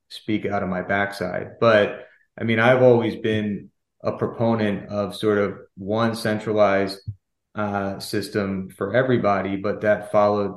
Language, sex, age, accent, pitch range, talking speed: English, male, 30-49, American, 100-110 Hz, 140 wpm